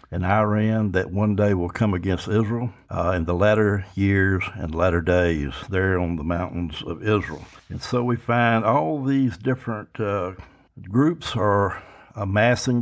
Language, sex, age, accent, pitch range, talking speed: English, male, 60-79, American, 95-125 Hz, 160 wpm